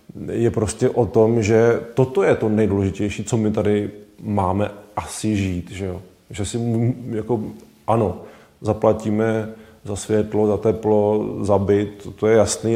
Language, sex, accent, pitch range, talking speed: Czech, male, native, 105-120 Hz, 145 wpm